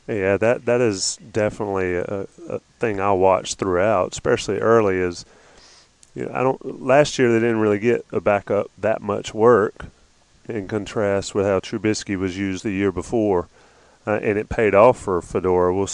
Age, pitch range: 30-49, 100-120 Hz